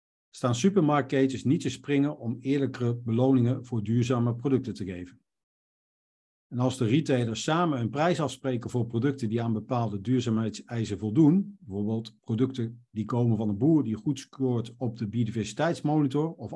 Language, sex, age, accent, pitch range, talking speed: Dutch, male, 50-69, Dutch, 115-140 Hz, 150 wpm